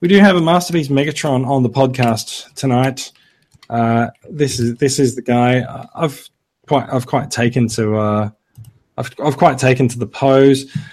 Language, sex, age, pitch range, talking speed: English, male, 20-39, 125-150 Hz, 170 wpm